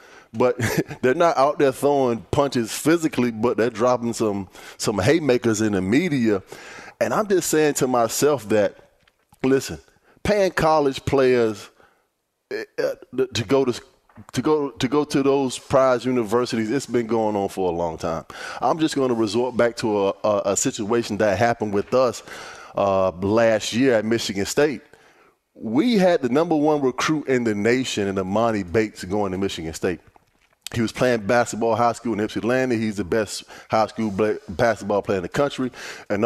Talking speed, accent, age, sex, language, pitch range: 170 wpm, American, 20-39, male, English, 105-140 Hz